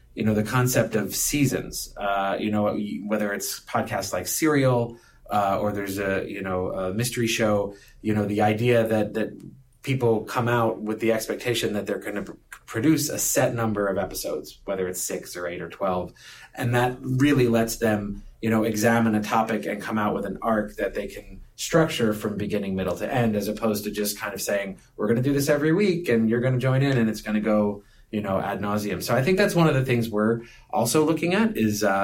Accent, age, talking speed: American, 30-49, 225 wpm